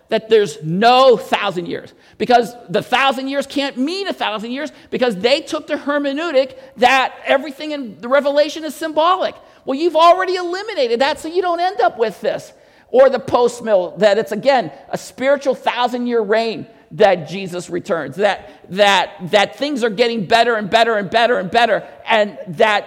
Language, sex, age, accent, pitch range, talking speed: English, male, 50-69, American, 215-290 Hz, 175 wpm